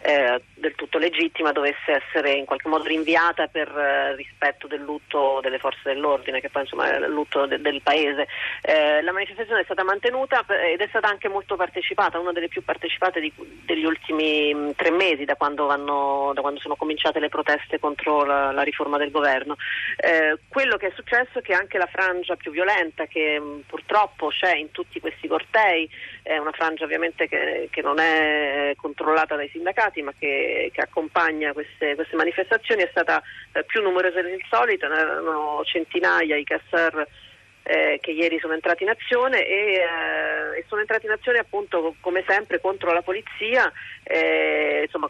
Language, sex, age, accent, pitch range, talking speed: Italian, female, 30-49, native, 150-185 Hz, 170 wpm